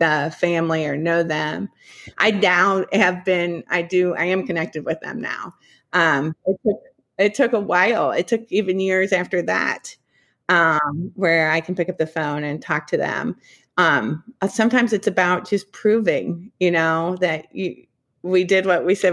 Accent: American